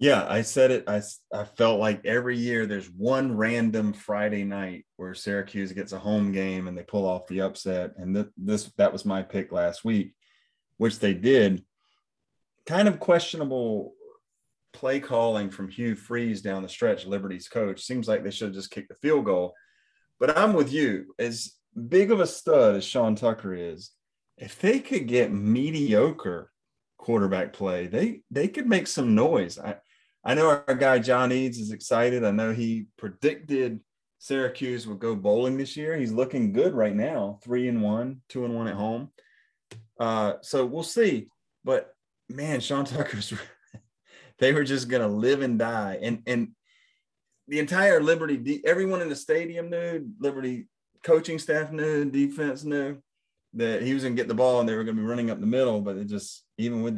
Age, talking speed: 30-49, 180 wpm